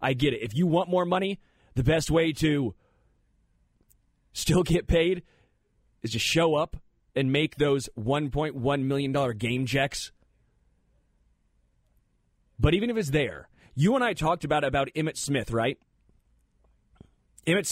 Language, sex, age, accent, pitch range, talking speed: English, male, 30-49, American, 115-150 Hz, 140 wpm